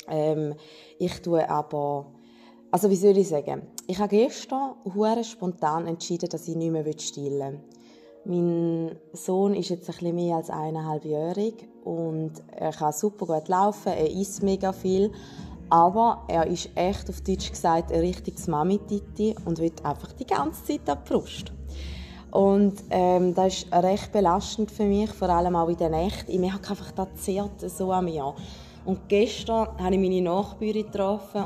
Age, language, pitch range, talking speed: 20-39, German, 165-205 Hz, 170 wpm